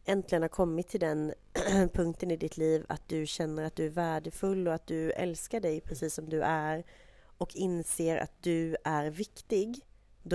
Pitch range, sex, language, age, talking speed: 150-180 Hz, female, Swedish, 30-49, 185 wpm